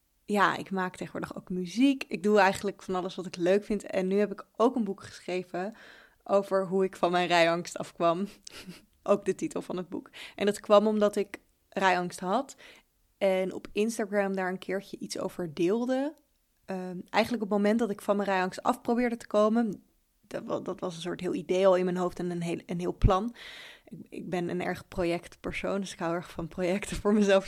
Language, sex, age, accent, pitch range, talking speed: Dutch, female, 20-39, Dutch, 185-210 Hz, 205 wpm